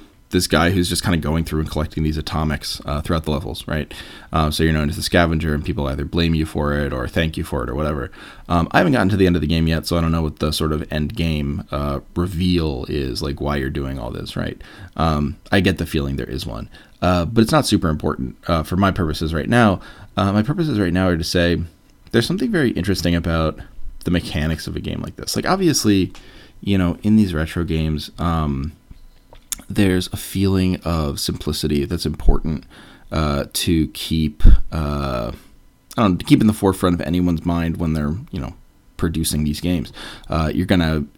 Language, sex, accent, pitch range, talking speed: English, male, American, 75-95 Hz, 220 wpm